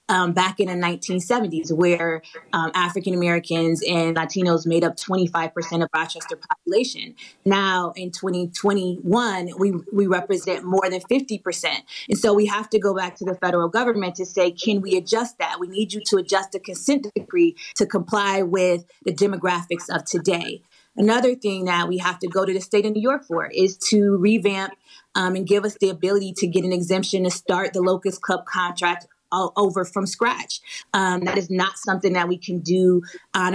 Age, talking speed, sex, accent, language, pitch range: 20-39, 190 wpm, female, American, English, 175-210 Hz